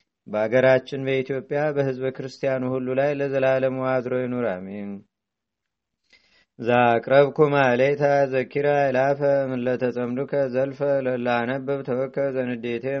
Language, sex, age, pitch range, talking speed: Amharic, male, 30-49, 120-135 Hz, 90 wpm